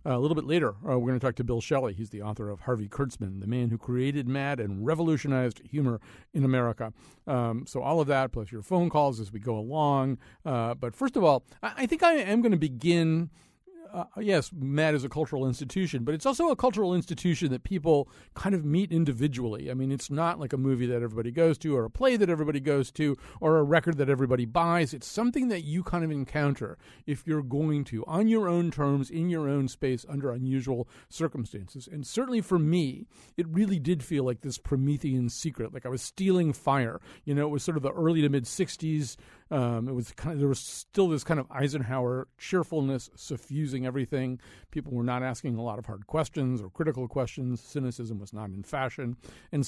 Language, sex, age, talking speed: English, male, 50-69, 215 wpm